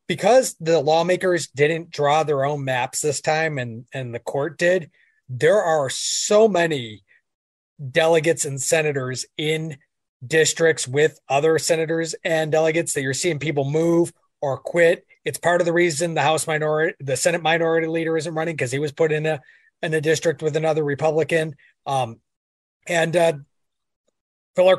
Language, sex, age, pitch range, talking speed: English, male, 30-49, 145-175 Hz, 160 wpm